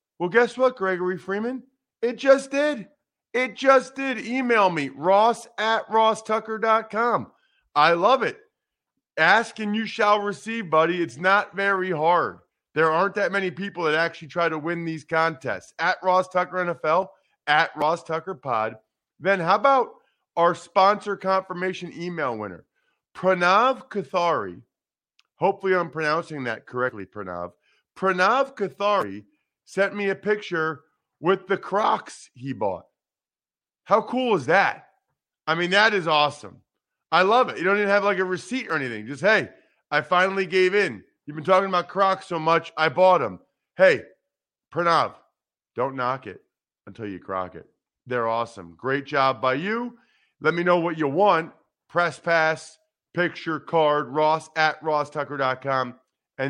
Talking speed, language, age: 150 wpm, English, 40-59